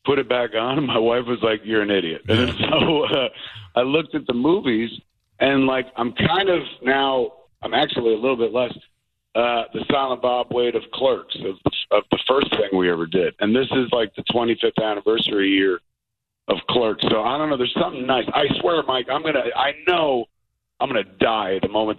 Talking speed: 215 wpm